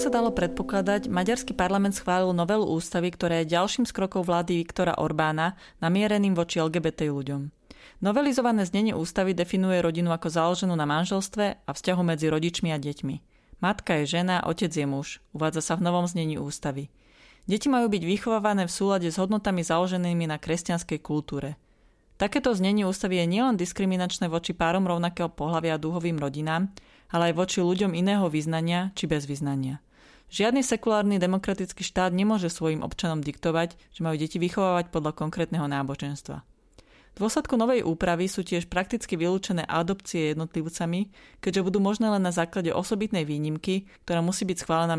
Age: 30-49